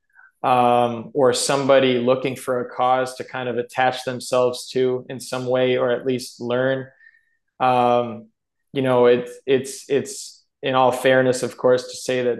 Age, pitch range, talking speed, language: 20-39, 125-130 Hz, 165 wpm, English